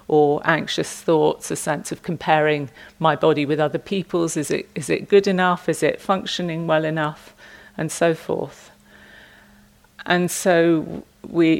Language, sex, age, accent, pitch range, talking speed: English, female, 40-59, British, 150-170 Hz, 140 wpm